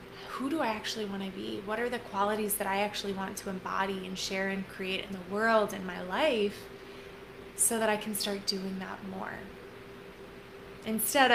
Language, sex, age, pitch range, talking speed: English, female, 20-39, 195-220 Hz, 190 wpm